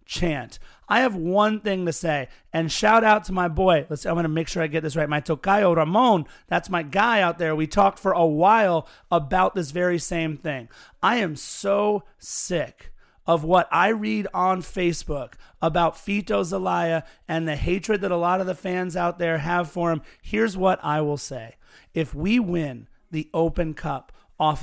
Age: 30-49